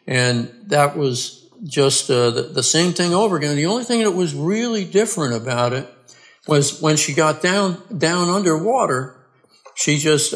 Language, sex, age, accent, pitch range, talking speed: English, male, 60-79, American, 130-165 Hz, 170 wpm